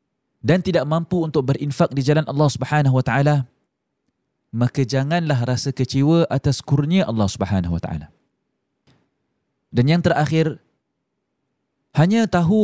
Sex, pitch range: male, 130-155 Hz